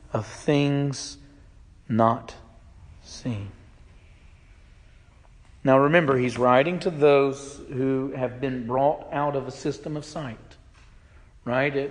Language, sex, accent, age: English, male, American, 40-59